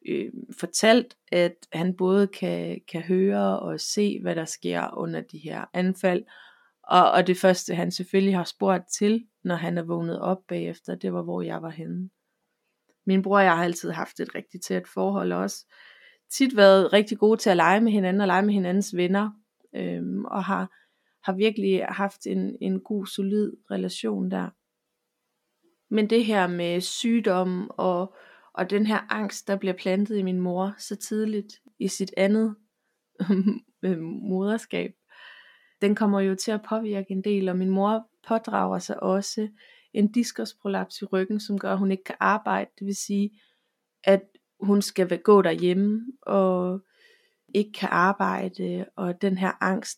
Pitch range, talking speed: 185-210 Hz, 165 wpm